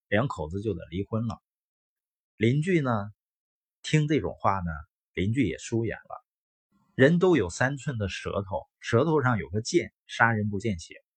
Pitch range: 95-135 Hz